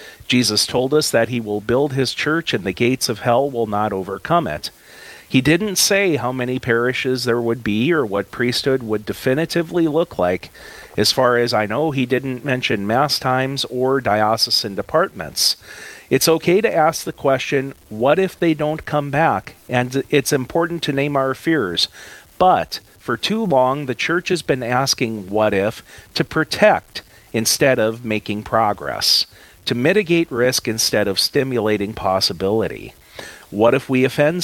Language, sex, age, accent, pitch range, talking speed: English, male, 40-59, American, 110-145 Hz, 165 wpm